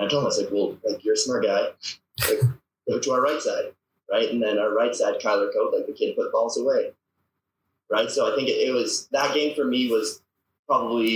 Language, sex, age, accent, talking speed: English, male, 20-39, American, 240 wpm